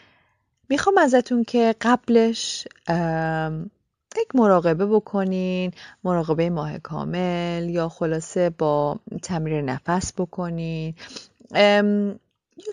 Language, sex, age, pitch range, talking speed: Persian, female, 30-49, 160-215 Hz, 80 wpm